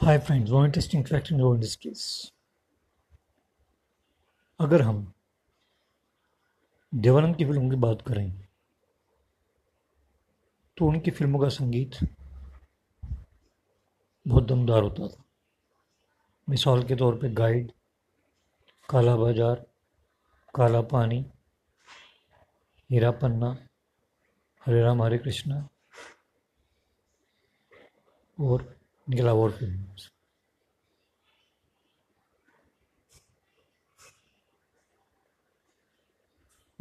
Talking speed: 70 wpm